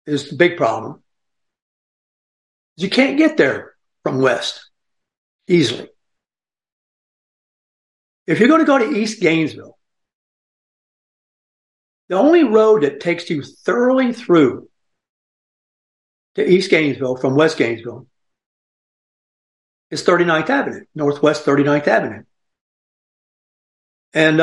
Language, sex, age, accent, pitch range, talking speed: English, male, 60-79, American, 150-220 Hz, 100 wpm